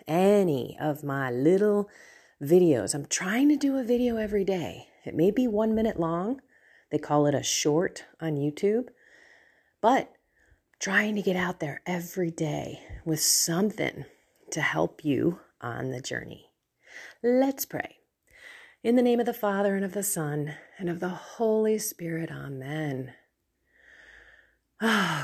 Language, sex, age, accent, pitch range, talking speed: English, female, 30-49, American, 150-220 Hz, 145 wpm